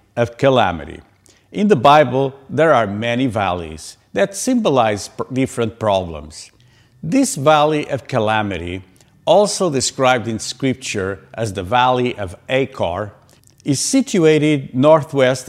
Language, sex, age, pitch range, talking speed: English, male, 50-69, 105-150 Hz, 110 wpm